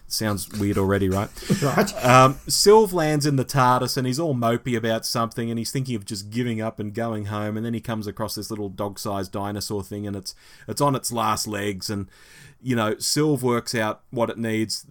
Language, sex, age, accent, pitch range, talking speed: English, male, 30-49, Australian, 100-125 Hz, 210 wpm